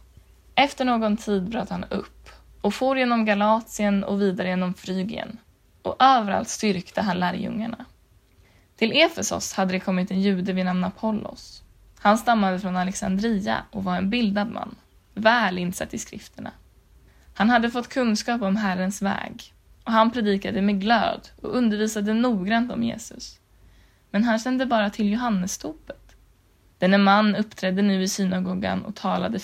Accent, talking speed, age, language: native, 150 wpm, 20-39, Swedish